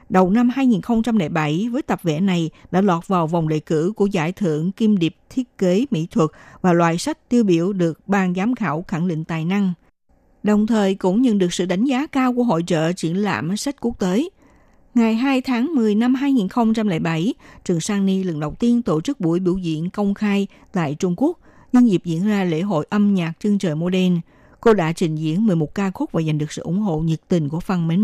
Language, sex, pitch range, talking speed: Vietnamese, female, 165-225 Hz, 225 wpm